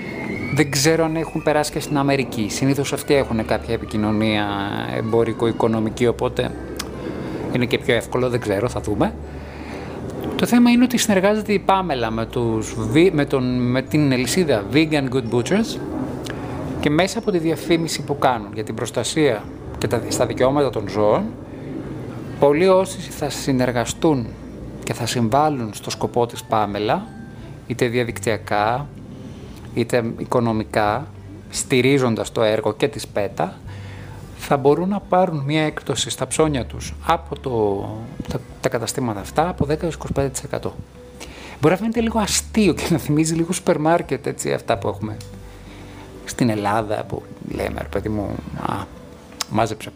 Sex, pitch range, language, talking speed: male, 105-155 Hz, Greek, 135 wpm